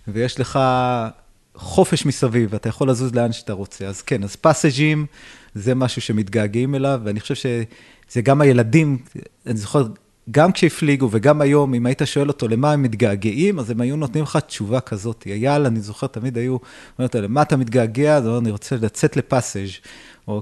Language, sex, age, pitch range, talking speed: Hebrew, male, 30-49, 105-135 Hz, 175 wpm